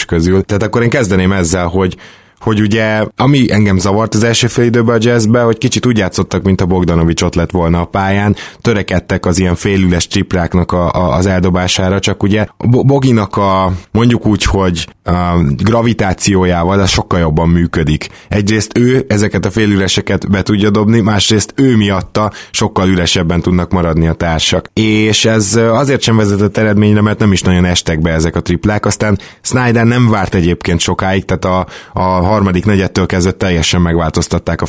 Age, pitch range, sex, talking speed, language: 20-39, 90-110 Hz, male, 175 wpm, Hungarian